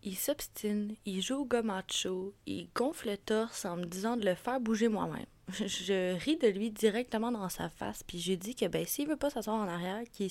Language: French